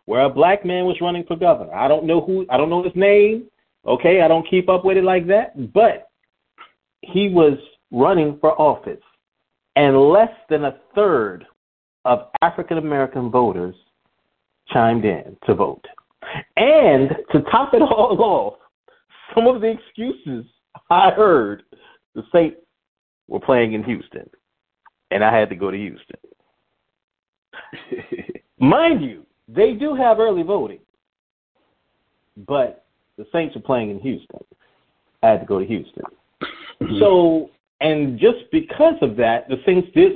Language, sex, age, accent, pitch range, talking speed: English, male, 40-59, American, 135-190 Hz, 150 wpm